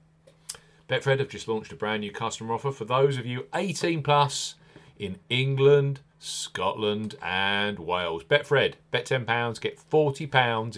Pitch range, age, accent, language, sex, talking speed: 105-140 Hz, 40-59, British, English, male, 140 wpm